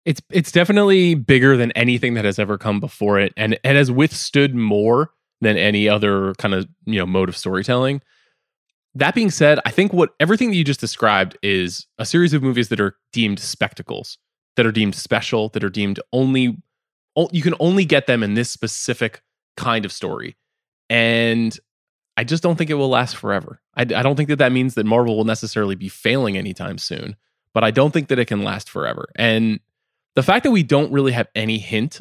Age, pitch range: 20-39, 105-140 Hz